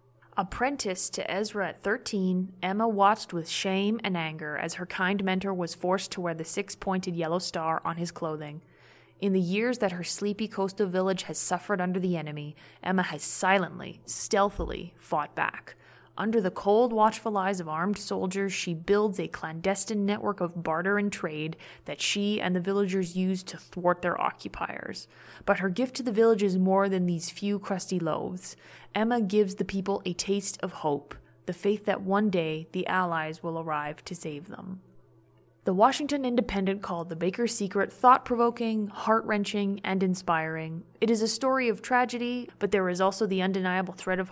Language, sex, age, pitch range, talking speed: English, female, 20-39, 170-205 Hz, 175 wpm